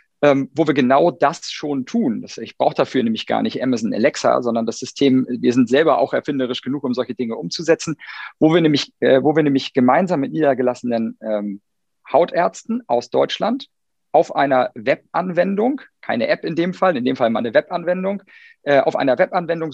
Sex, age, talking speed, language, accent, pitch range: male, 40-59, 185 wpm, German, German, 130-180 Hz